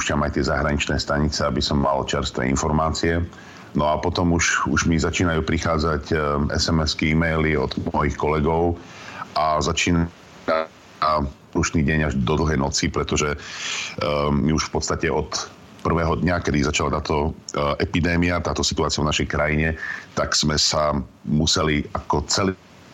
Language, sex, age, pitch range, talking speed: Slovak, male, 40-59, 75-85 Hz, 145 wpm